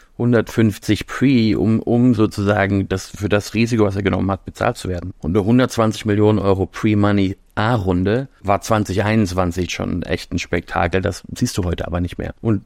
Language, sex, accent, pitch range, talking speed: German, male, German, 95-110 Hz, 180 wpm